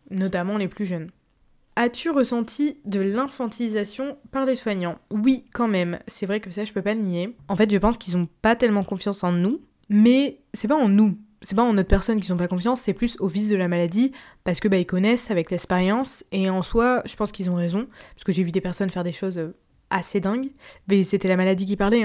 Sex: female